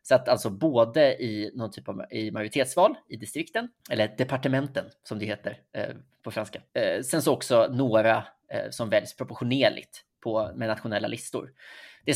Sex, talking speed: male, 160 wpm